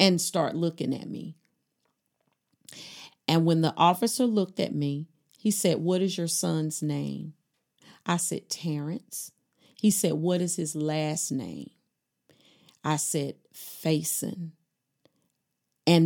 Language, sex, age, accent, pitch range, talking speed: English, female, 40-59, American, 150-175 Hz, 125 wpm